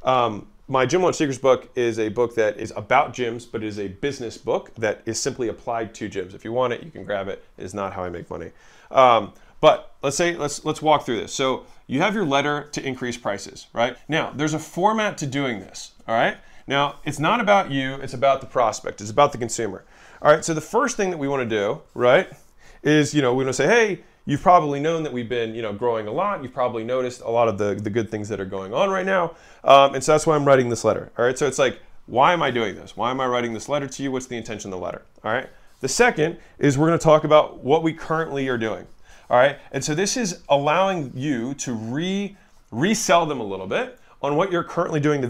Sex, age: male, 30-49